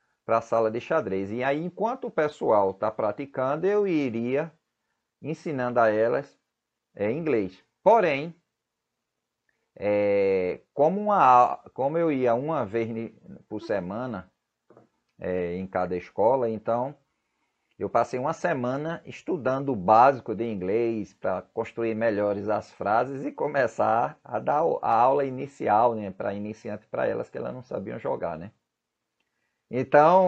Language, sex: Portuguese, male